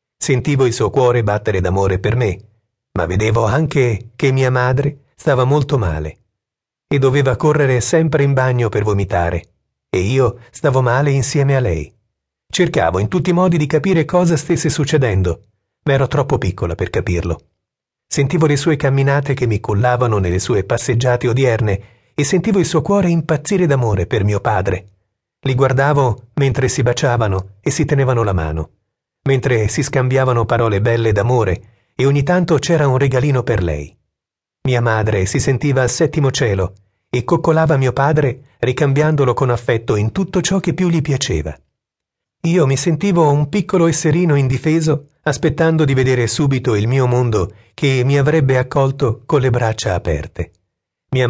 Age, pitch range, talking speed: 40-59, 105-145 Hz, 160 wpm